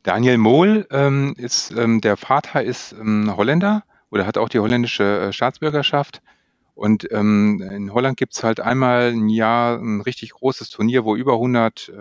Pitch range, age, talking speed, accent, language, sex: 110-130 Hz, 40-59, 175 wpm, German, German, male